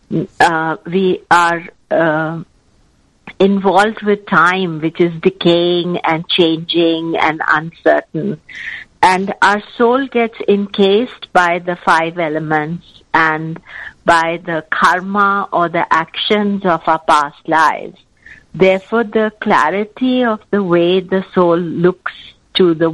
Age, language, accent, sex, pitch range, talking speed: 50-69, English, Indian, female, 165-200 Hz, 120 wpm